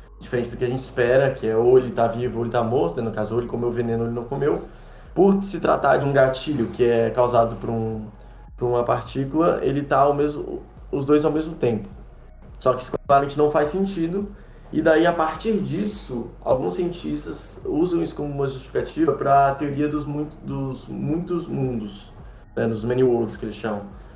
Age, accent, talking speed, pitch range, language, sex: 20-39, Brazilian, 205 wpm, 120-145 Hz, Portuguese, male